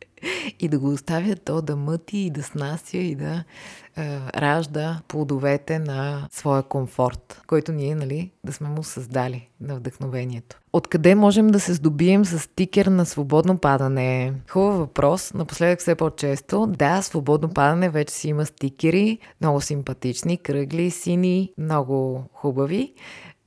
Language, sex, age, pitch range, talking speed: Bulgarian, female, 20-39, 140-185 Hz, 140 wpm